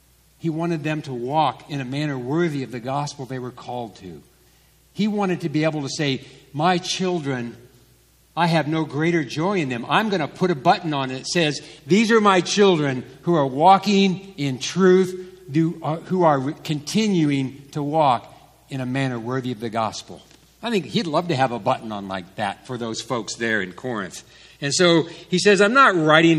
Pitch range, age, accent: 140-190 Hz, 60-79, American